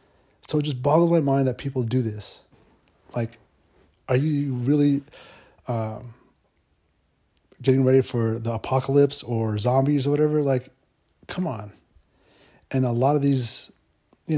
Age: 30-49